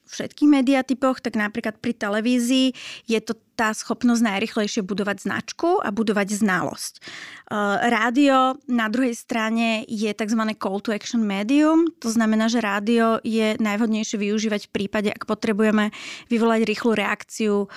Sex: female